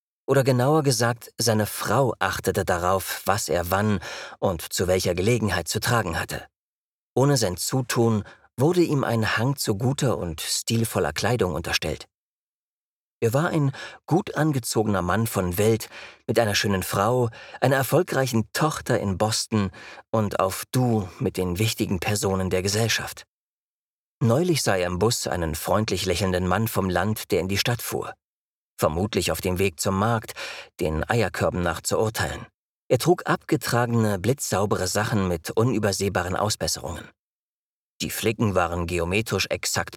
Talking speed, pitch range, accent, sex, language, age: 145 wpm, 95-125 Hz, German, male, German, 40-59